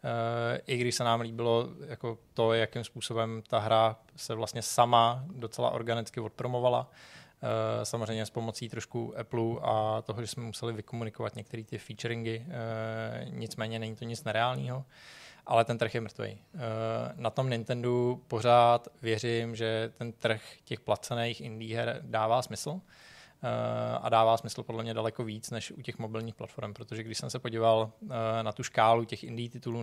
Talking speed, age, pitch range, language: 155 wpm, 20-39, 115-120 Hz, Czech